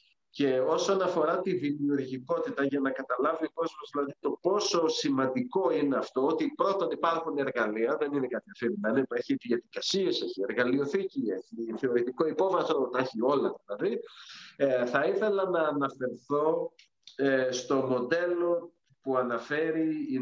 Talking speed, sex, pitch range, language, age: 120 wpm, male, 120-160 Hz, Greek, 50-69